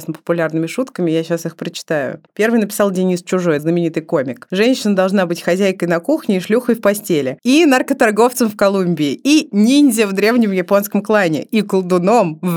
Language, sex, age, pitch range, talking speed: Russian, female, 30-49, 175-235 Hz, 165 wpm